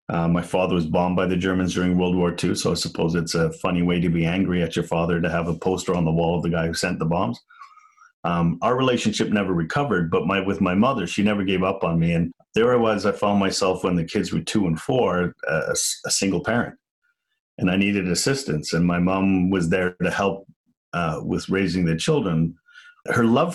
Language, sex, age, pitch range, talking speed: Swedish, male, 40-59, 85-105 Hz, 230 wpm